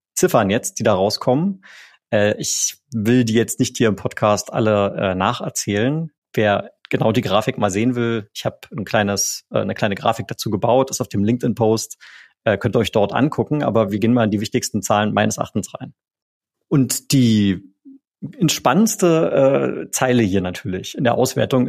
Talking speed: 170 wpm